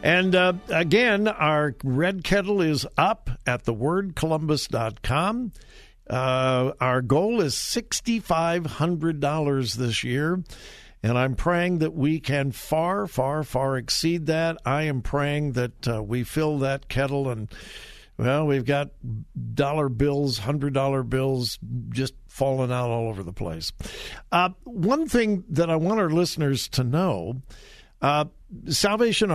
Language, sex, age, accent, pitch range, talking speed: English, male, 60-79, American, 125-170 Hz, 130 wpm